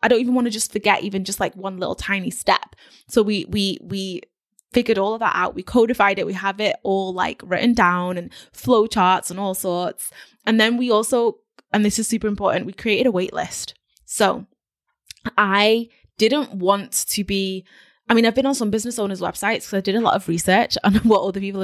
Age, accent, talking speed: 20-39, British, 215 wpm